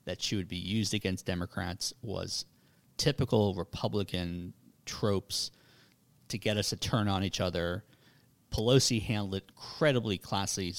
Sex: male